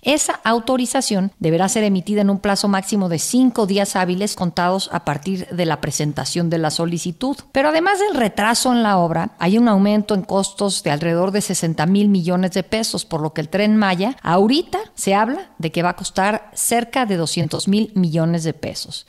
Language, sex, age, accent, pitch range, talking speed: Spanish, female, 50-69, Mexican, 180-225 Hz, 200 wpm